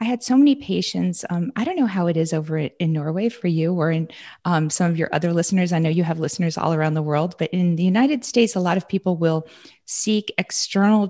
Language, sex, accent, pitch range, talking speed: English, female, American, 175-235 Hz, 250 wpm